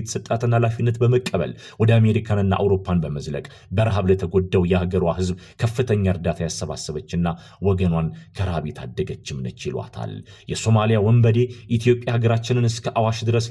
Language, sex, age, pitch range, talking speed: Amharic, male, 30-49, 90-110 Hz, 100 wpm